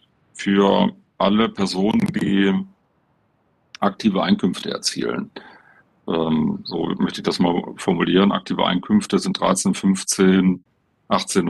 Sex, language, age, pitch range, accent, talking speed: male, German, 40-59, 95-115 Hz, German, 100 wpm